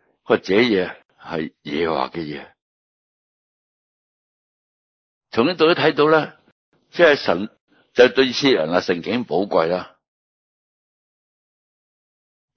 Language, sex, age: Chinese, male, 60-79